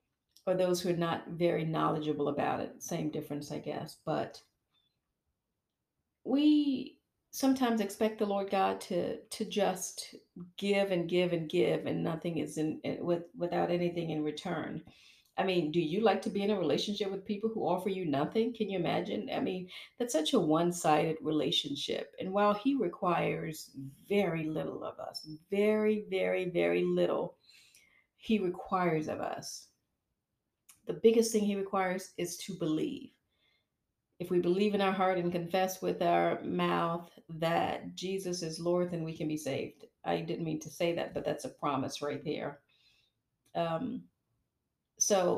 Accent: American